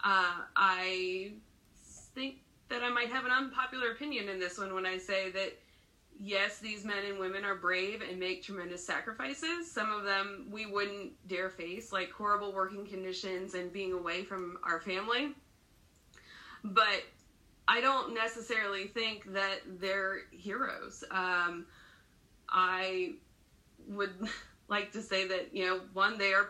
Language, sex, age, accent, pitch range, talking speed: English, female, 20-39, American, 190-225 Hz, 145 wpm